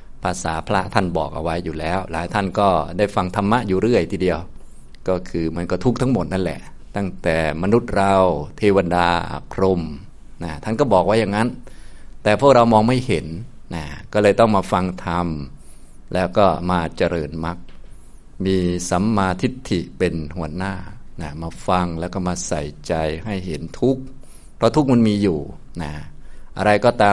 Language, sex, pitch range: Thai, male, 80-100 Hz